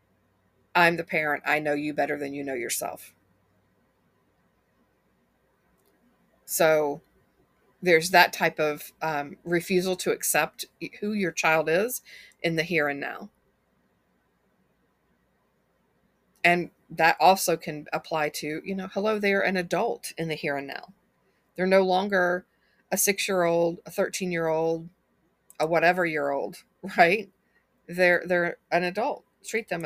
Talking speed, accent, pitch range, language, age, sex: 135 wpm, American, 160-195 Hz, English, 50-69, female